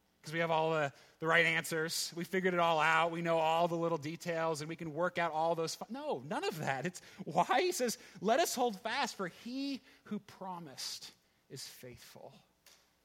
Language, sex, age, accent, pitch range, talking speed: English, male, 30-49, American, 150-220 Hz, 205 wpm